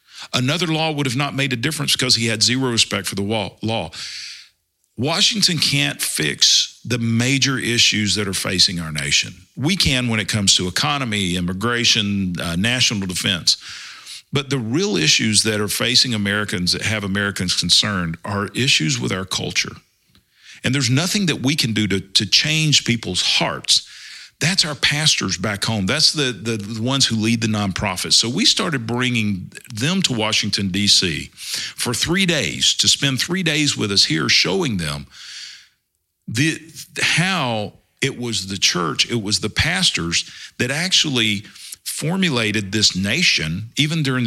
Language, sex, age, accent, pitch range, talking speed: English, male, 50-69, American, 100-140 Hz, 160 wpm